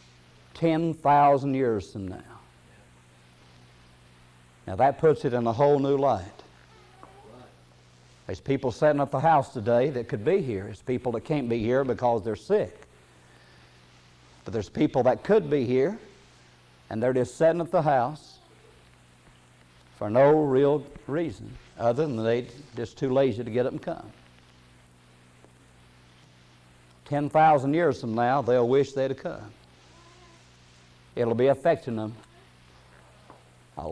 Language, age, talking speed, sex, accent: English, 50-69, 135 wpm, male, American